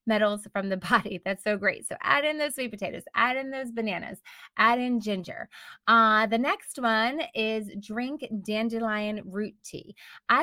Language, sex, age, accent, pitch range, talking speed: English, female, 20-39, American, 185-235 Hz, 175 wpm